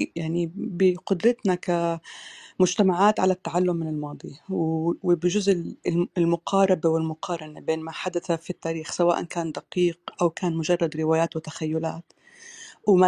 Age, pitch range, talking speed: 30-49, 165-195 Hz, 110 wpm